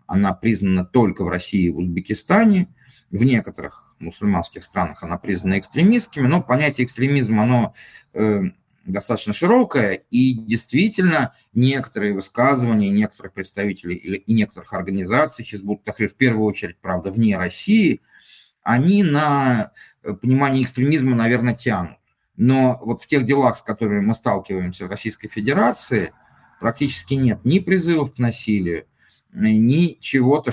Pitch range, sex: 100-130 Hz, male